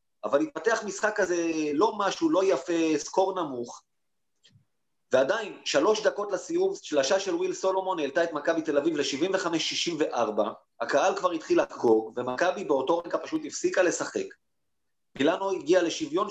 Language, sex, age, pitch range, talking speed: Hebrew, male, 30-49, 150-190 Hz, 135 wpm